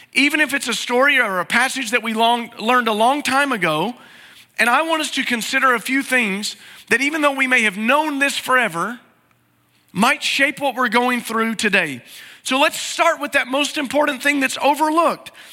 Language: English